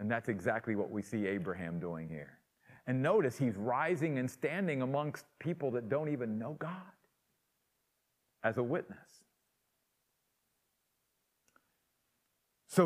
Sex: male